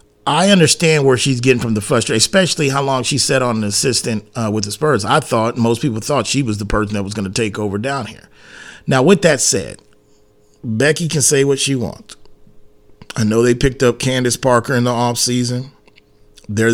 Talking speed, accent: 210 wpm, American